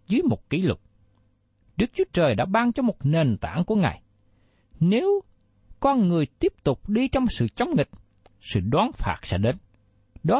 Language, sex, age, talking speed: Vietnamese, male, 60-79, 180 wpm